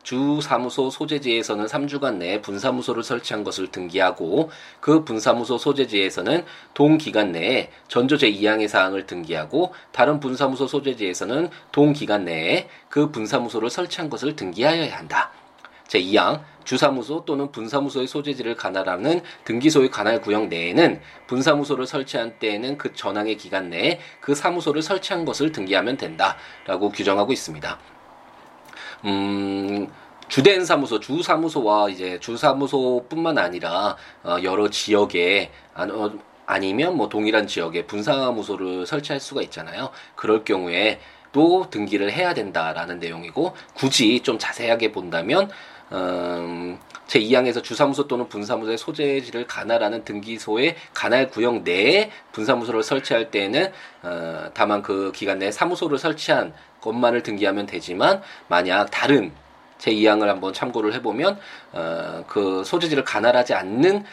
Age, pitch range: 20-39, 105-145 Hz